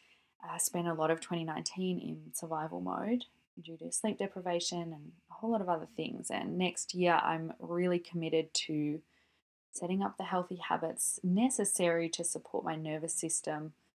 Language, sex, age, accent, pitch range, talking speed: English, female, 20-39, Australian, 165-190 Hz, 165 wpm